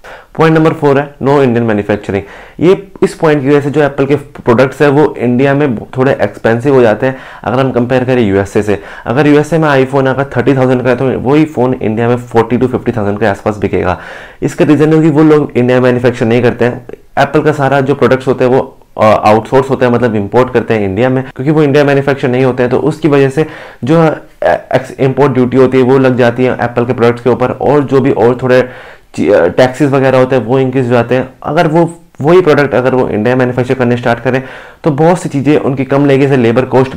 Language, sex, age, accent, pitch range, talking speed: Hindi, male, 20-39, native, 120-140 Hz, 235 wpm